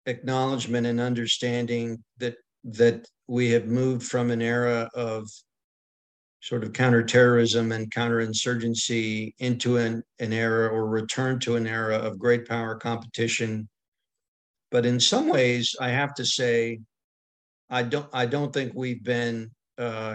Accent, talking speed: American, 135 wpm